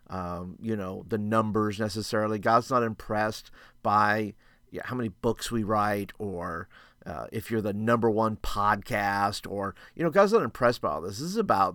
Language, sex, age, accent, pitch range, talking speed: English, male, 40-59, American, 105-135 Hz, 180 wpm